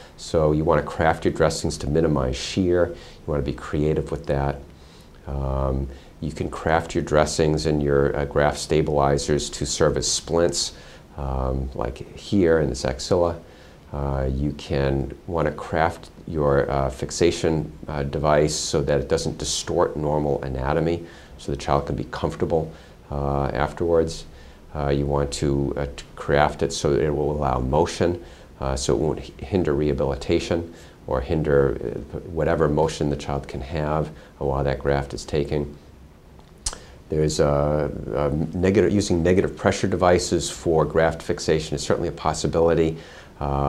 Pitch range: 70-80 Hz